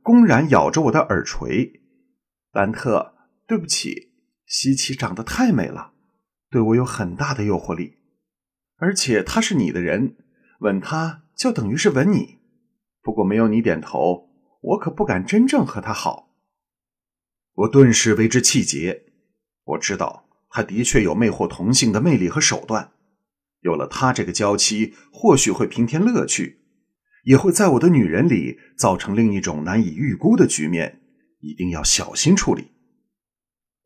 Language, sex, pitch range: Chinese, male, 105-175 Hz